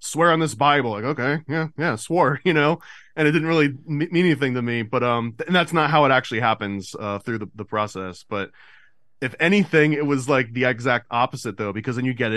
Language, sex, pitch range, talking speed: English, male, 110-140 Hz, 235 wpm